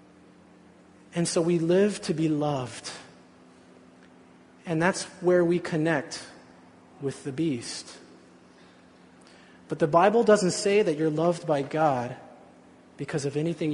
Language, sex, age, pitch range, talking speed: English, male, 30-49, 150-185 Hz, 120 wpm